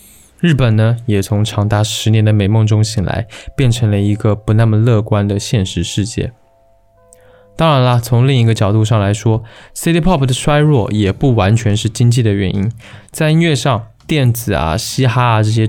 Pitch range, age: 105-130 Hz, 20-39